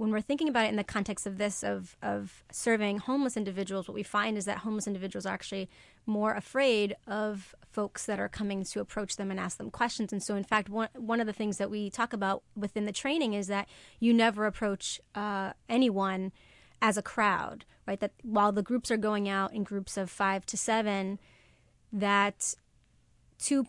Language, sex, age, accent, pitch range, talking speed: English, female, 30-49, American, 200-220 Hz, 205 wpm